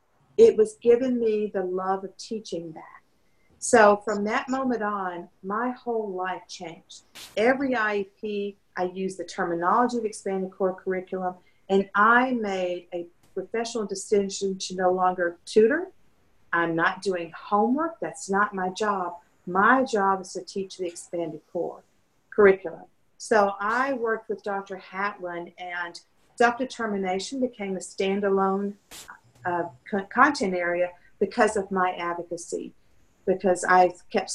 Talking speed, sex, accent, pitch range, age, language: 130 wpm, female, American, 180-220 Hz, 50-69, English